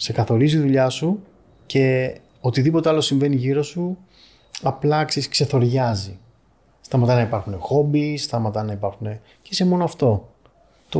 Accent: native